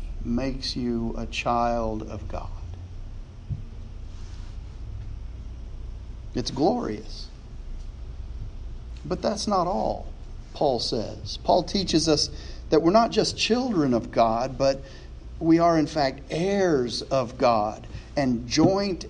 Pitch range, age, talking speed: 105-170 Hz, 50-69, 105 wpm